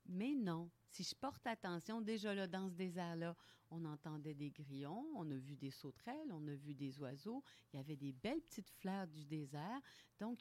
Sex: female